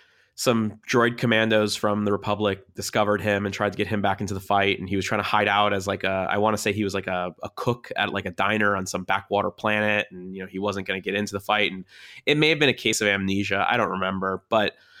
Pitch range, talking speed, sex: 95-110 Hz, 275 wpm, male